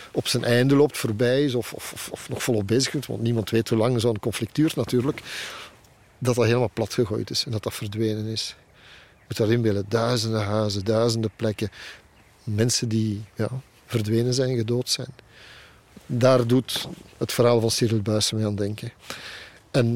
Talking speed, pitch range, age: 180 wpm, 110-130 Hz, 50-69